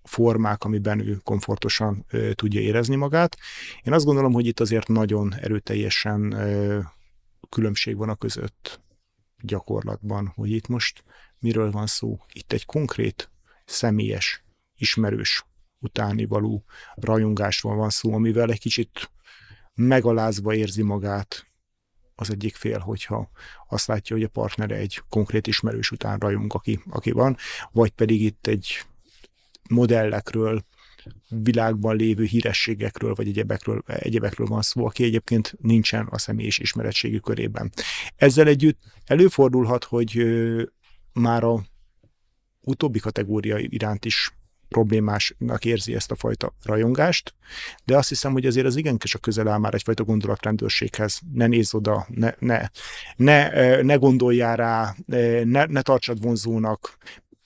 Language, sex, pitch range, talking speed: Hungarian, male, 105-115 Hz, 125 wpm